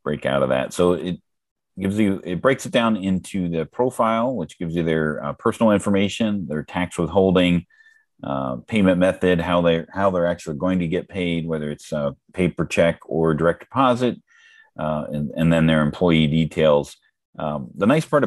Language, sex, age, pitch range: English, male, 40-59, 75-90 Hz